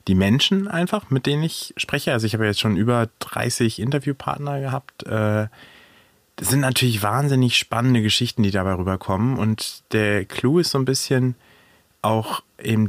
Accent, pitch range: German, 100-120 Hz